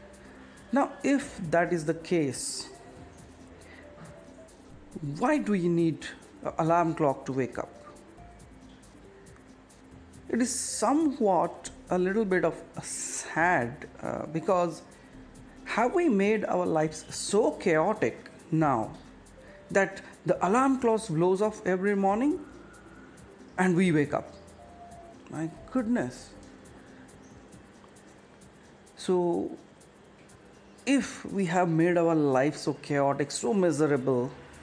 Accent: Indian